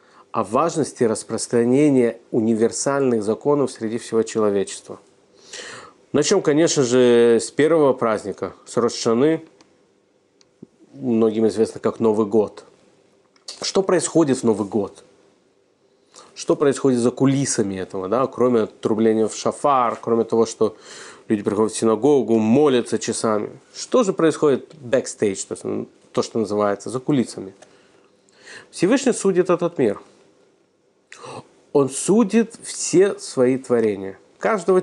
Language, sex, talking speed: Russian, male, 110 wpm